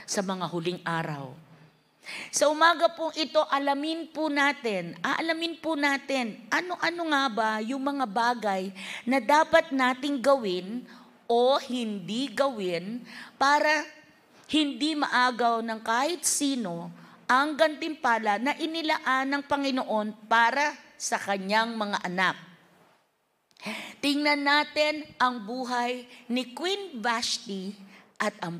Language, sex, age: Filipino, female, 50-69